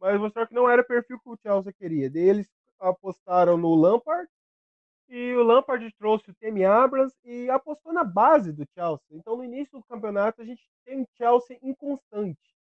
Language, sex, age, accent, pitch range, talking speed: Portuguese, male, 20-39, Brazilian, 180-230 Hz, 185 wpm